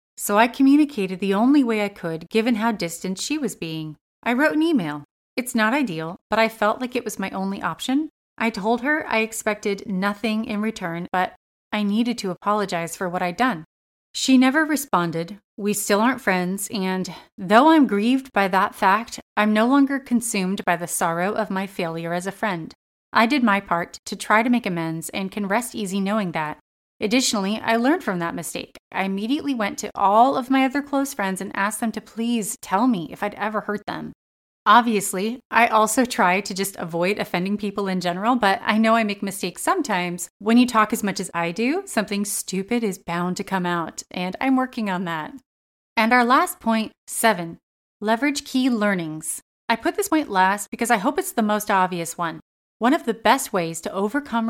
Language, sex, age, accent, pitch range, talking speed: English, female, 30-49, American, 190-240 Hz, 200 wpm